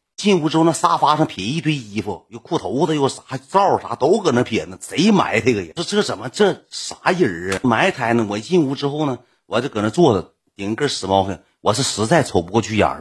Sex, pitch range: male, 95-135 Hz